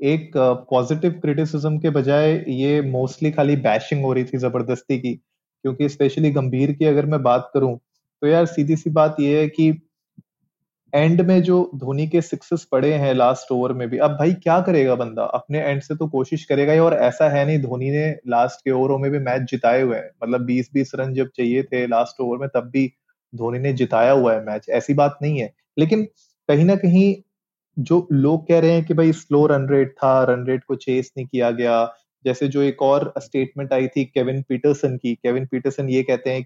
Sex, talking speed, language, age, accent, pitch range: male, 210 wpm, Hindi, 30-49, native, 125-155 Hz